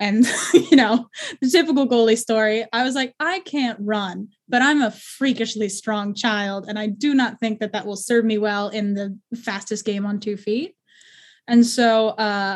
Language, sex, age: English, female, 10-29